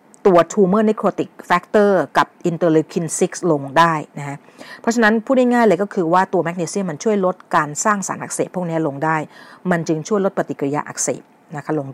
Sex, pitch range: female, 160-225 Hz